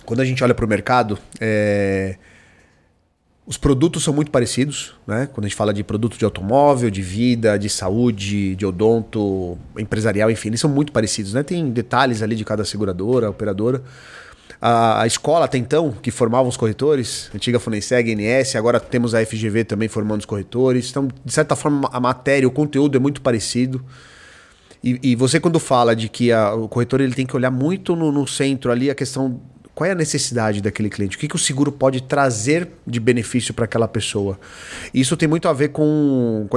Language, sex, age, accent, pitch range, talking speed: Portuguese, male, 30-49, Brazilian, 110-135 Hz, 190 wpm